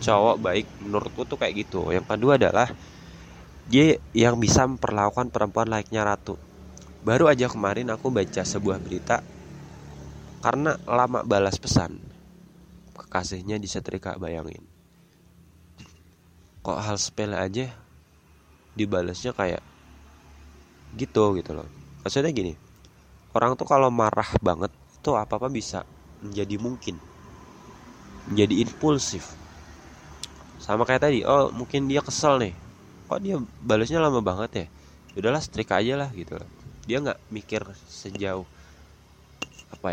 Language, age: Indonesian, 20-39